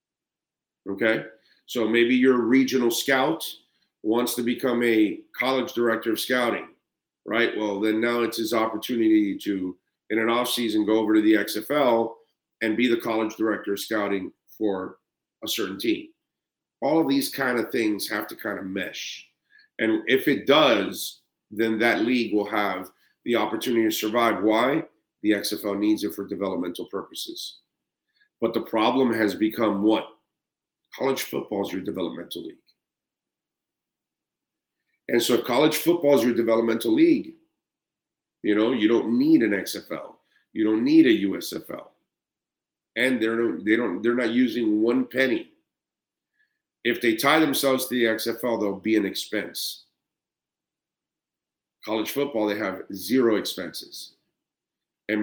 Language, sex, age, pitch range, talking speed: English, male, 40-59, 110-135 Hz, 145 wpm